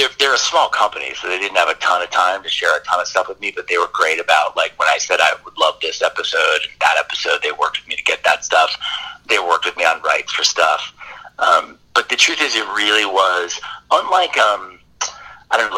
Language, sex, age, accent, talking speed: English, male, 40-59, American, 250 wpm